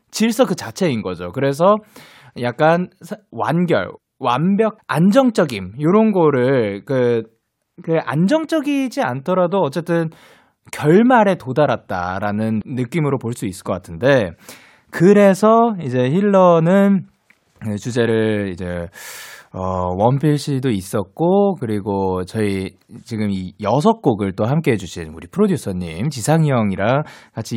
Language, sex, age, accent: Korean, male, 20-39, native